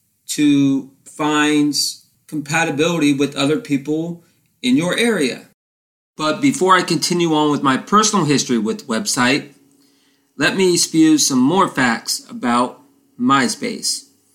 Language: English